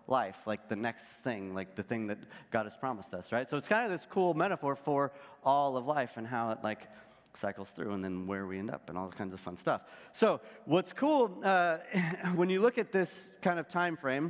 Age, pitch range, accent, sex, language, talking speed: 30-49, 120-165 Hz, American, male, English, 235 wpm